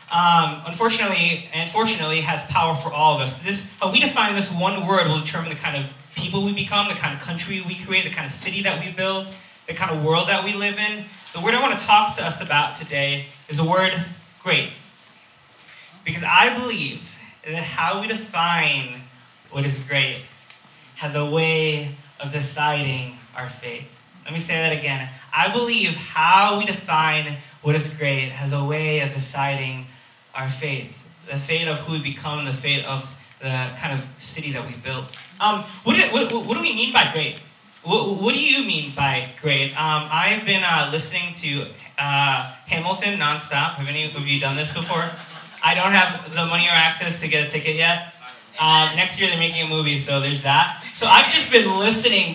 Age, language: 20-39, English